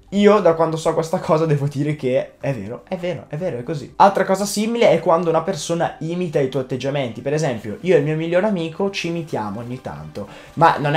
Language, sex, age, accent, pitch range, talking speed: Italian, male, 20-39, native, 130-175 Hz, 230 wpm